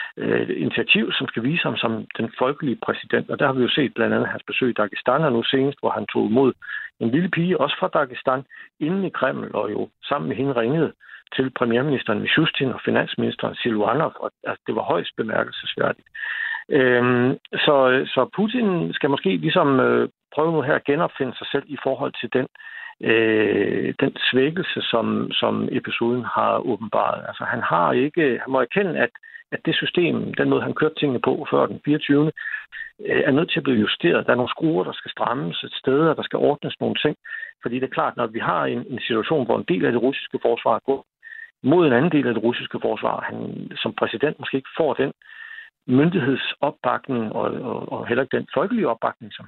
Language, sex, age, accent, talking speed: Danish, male, 60-79, native, 195 wpm